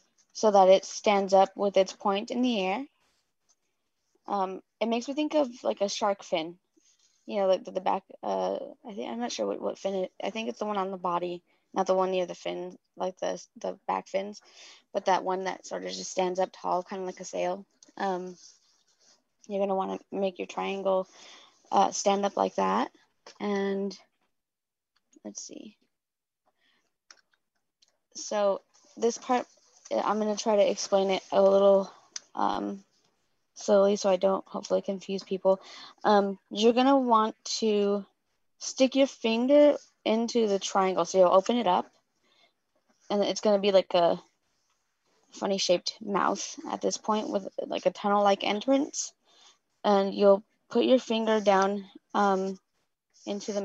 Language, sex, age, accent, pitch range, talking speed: English, female, 20-39, American, 190-215 Hz, 170 wpm